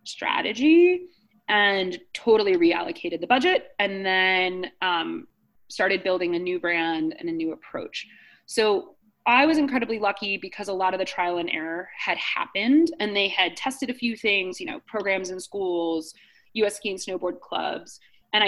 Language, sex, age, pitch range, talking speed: English, female, 20-39, 185-225 Hz, 165 wpm